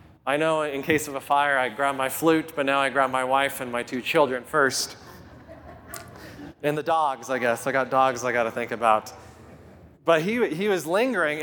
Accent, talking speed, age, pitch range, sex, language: American, 210 wpm, 20-39, 130-165 Hz, male, English